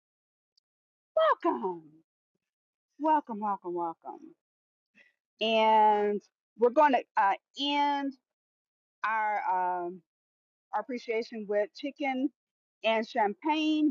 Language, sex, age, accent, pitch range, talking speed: English, female, 40-59, American, 205-270 Hz, 80 wpm